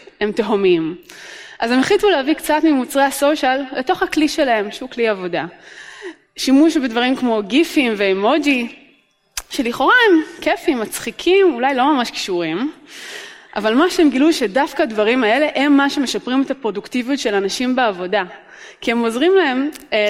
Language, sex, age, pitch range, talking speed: Hebrew, female, 20-39, 210-305 Hz, 145 wpm